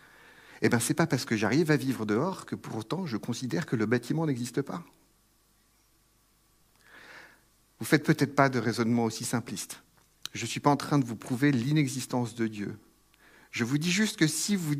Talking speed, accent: 195 wpm, French